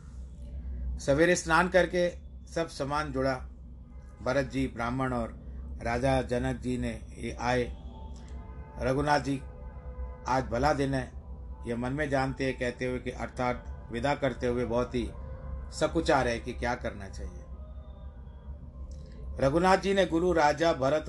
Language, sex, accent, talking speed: Hindi, male, native, 135 wpm